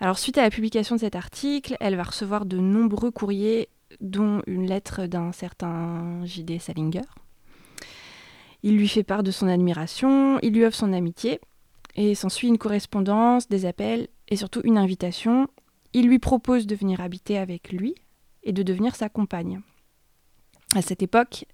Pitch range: 185-225 Hz